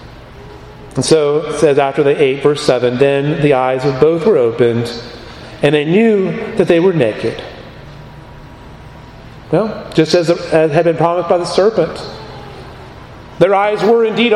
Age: 40-59